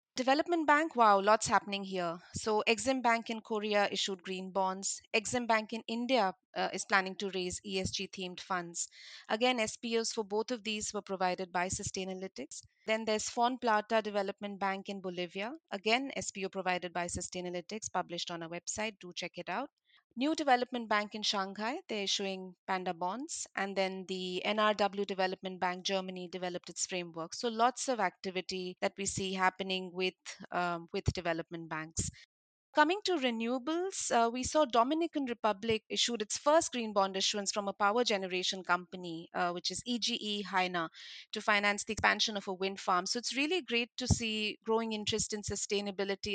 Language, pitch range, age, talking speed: English, 185-230 Hz, 30-49, 170 wpm